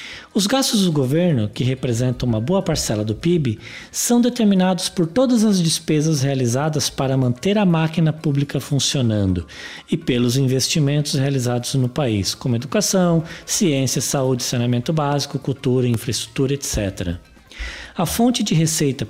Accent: Brazilian